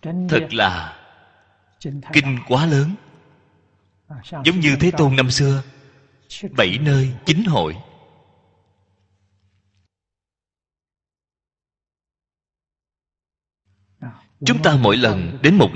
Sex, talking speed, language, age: male, 80 wpm, Vietnamese, 30-49